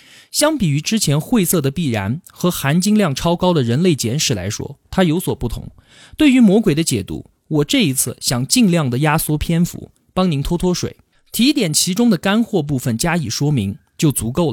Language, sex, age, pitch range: Chinese, male, 20-39, 125-195 Hz